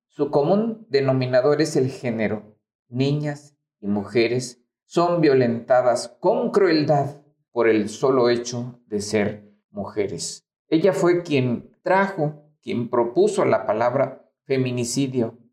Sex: male